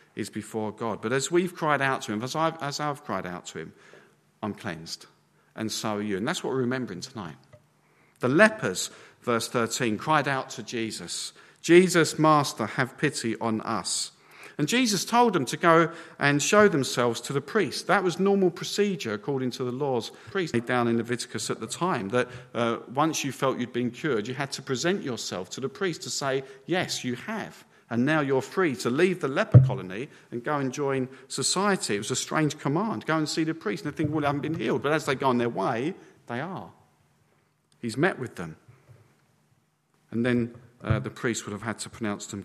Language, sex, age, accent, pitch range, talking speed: English, male, 50-69, British, 115-150 Hz, 210 wpm